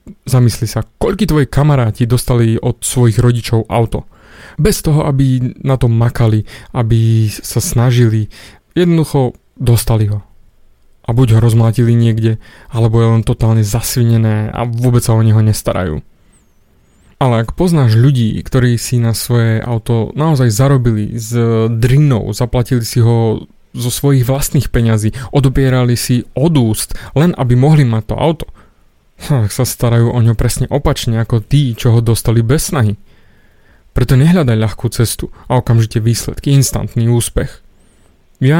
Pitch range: 115-135 Hz